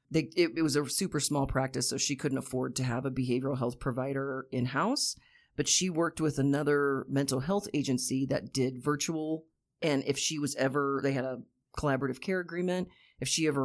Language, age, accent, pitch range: English, 40-59, American, 135-165 Hz